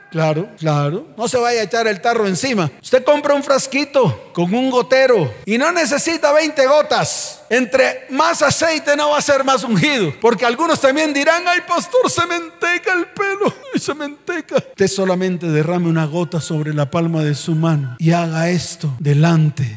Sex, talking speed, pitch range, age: male, 180 wpm, 180-295 Hz, 50-69